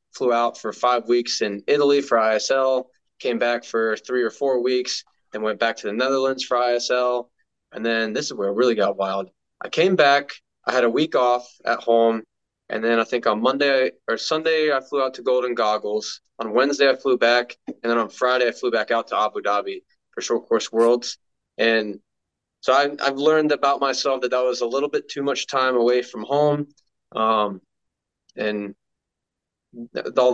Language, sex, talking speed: English, male, 195 wpm